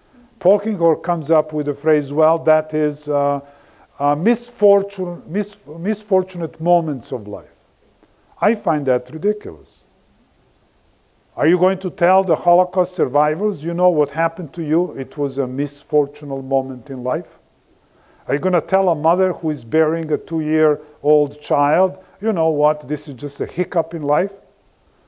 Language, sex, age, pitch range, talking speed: English, male, 50-69, 140-180 Hz, 150 wpm